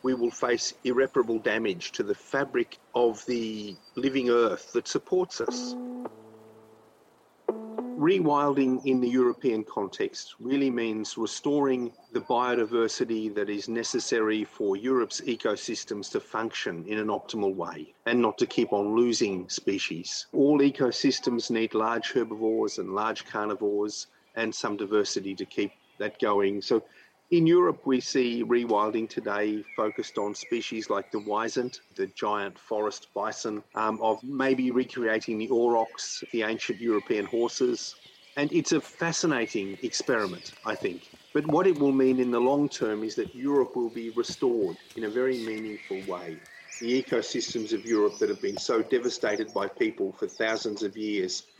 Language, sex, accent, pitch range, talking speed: English, male, Australian, 110-185 Hz, 150 wpm